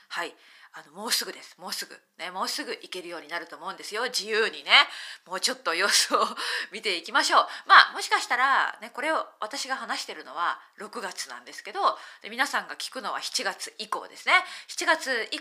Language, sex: Japanese, female